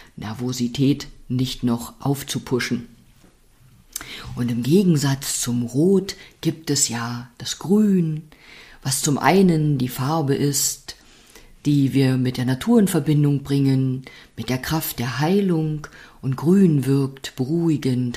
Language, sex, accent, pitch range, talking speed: German, female, German, 125-155 Hz, 120 wpm